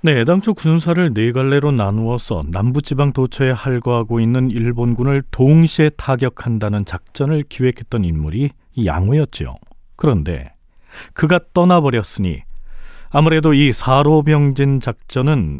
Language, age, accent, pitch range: Korean, 40-59, native, 115-150 Hz